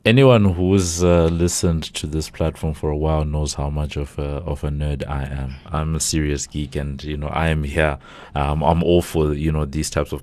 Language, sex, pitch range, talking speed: English, male, 70-85 Hz, 225 wpm